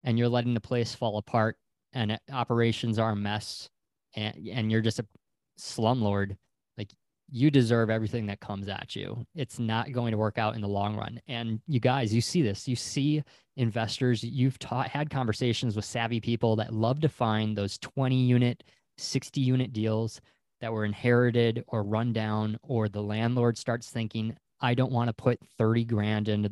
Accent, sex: American, male